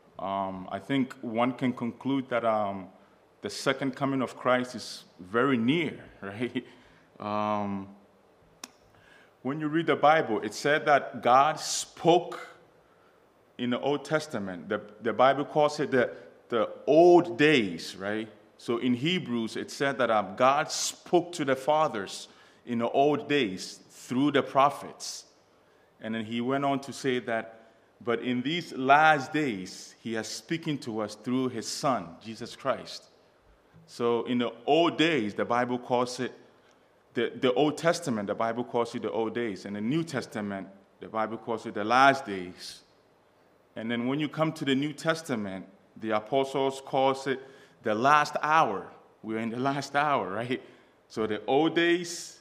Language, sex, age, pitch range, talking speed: English, male, 30-49, 110-145 Hz, 160 wpm